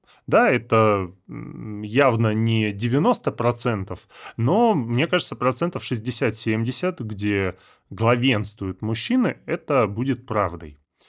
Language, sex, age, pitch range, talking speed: Russian, male, 30-49, 110-140 Hz, 85 wpm